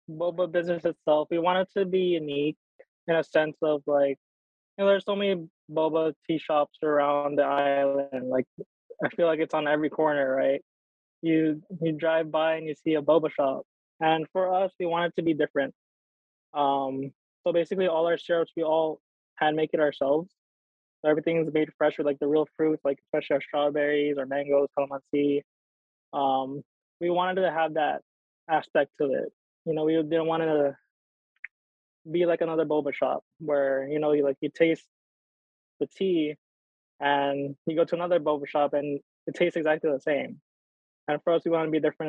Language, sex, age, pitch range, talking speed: English, male, 20-39, 140-165 Hz, 190 wpm